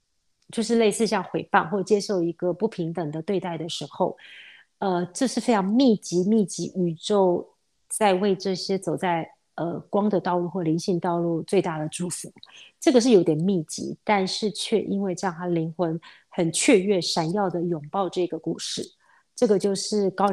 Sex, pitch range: female, 170-205 Hz